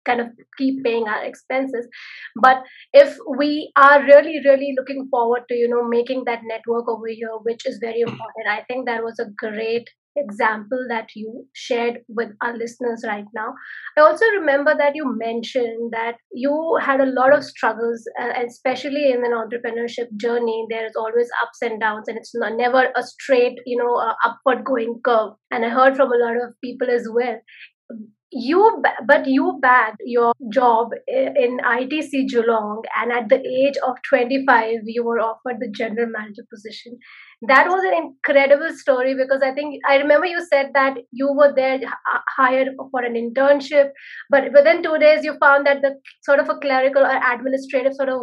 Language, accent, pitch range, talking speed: English, Indian, 235-280 Hz, 180 wpm